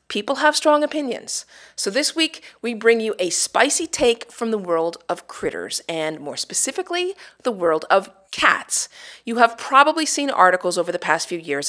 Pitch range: 170-270 Hz